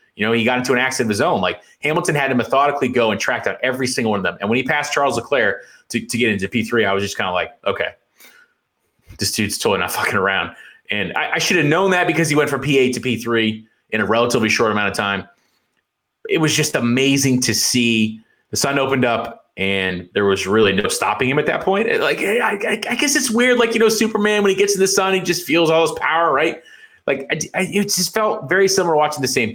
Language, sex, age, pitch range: English, male, 30-49, 110-170 Hz